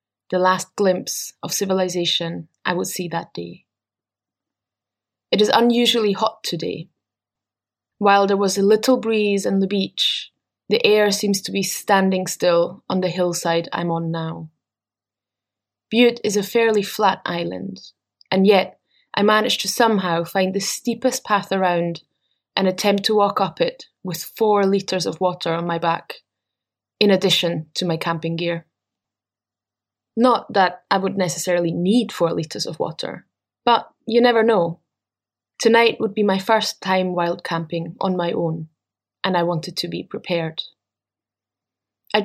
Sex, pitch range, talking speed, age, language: female, 165-205 Hz, 150 wpm, 20-39, English